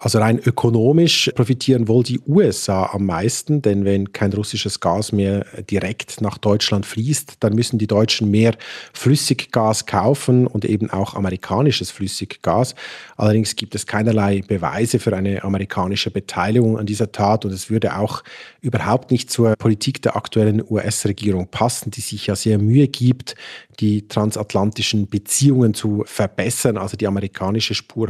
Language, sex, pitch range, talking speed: German, male, 100-120 Hz, 150 wpm